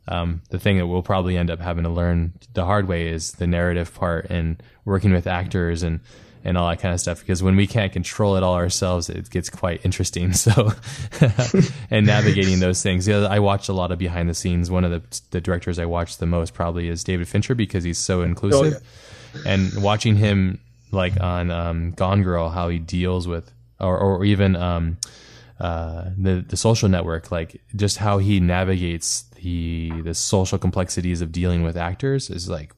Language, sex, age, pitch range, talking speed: English, male, 20-39, 85-100 Hz, 195 wpm